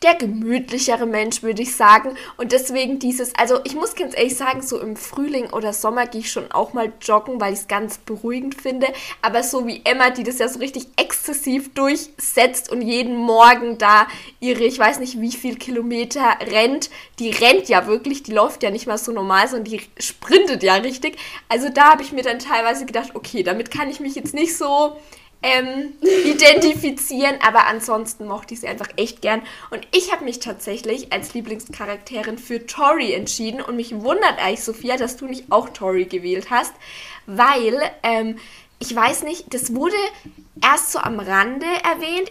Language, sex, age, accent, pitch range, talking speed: German, female, 10-29, German, 220-275 Hz, 185 wpm